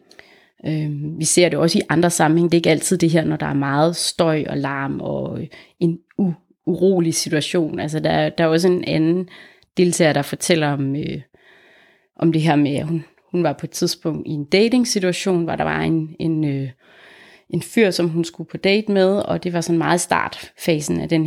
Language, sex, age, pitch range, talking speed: Danish, female, 30-49, 160-185 Hz, 210 wpm